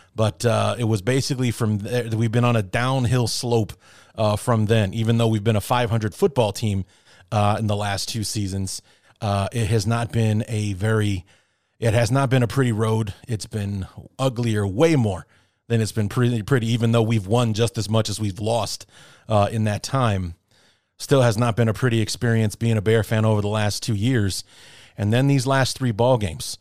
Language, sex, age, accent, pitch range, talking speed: English, male, 30-49, American, 105-125 Hz, 205 wpm